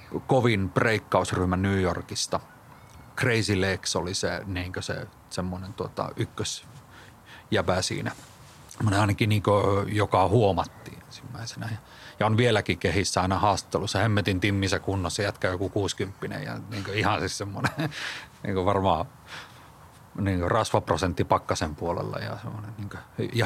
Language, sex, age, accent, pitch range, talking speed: Finnish, male, 30-49, native, 95-115 Hz, 125 wpm